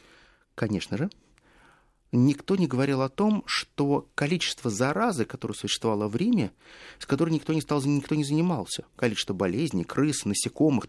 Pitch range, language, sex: 110-155 Hz, Russian, male